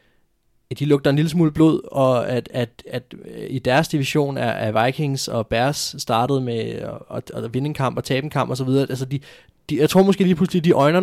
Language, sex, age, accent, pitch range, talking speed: Danish, male, 20-39, native, 115-150 Hz, 210 wpm